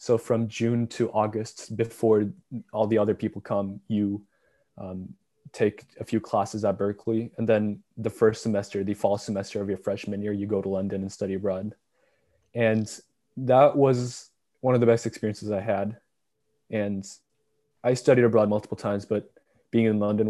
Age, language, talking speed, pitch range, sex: 20-39, English, 170 wpm, 105-115 Hz, male